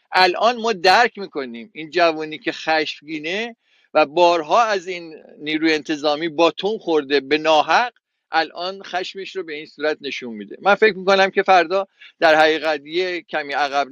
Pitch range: 140-185 Hz